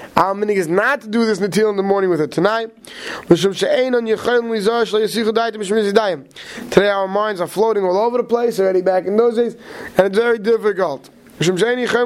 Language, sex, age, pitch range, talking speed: English, male, 20-39, 170-220 Hz, 175 wpm